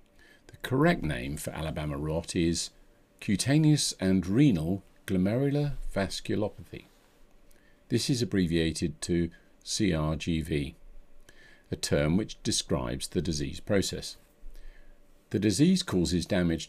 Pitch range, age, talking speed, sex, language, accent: 80-100 Hz, 50-69, 100 wpm, male, English, British